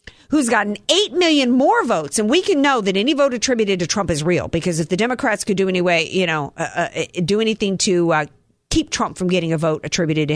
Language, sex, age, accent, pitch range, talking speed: English, female, 50-69, American, 195-280 Hz, 245 wpm